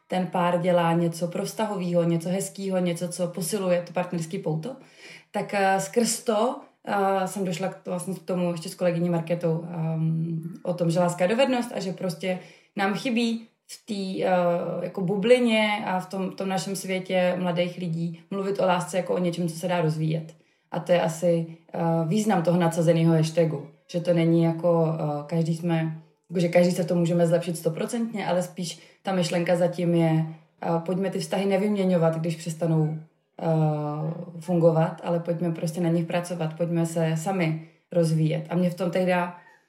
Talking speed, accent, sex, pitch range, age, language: 175 wpm, native, female, 165-185 Hz, 20-39, Czech